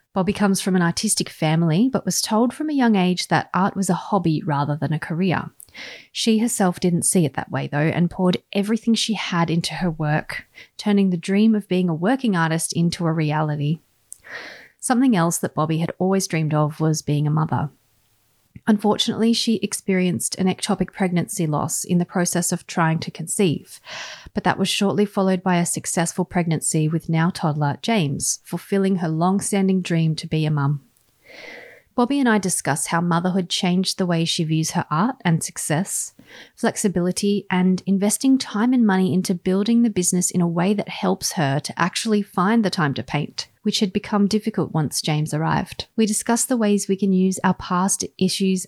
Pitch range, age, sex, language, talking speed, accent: 165-200 Hz, 30-49, female, English, 185 wpm, Australian